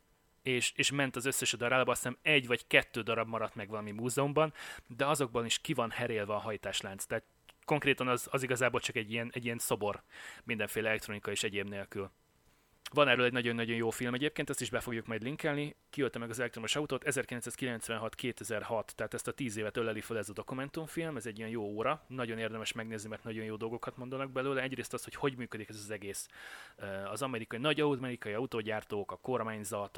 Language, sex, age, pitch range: Hungarian, male, 30-49, 110-130 Hz